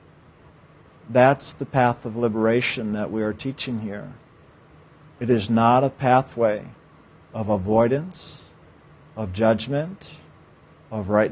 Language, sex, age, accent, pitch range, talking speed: English, male, 50-69, American, 115-140 Hz, 110 wpm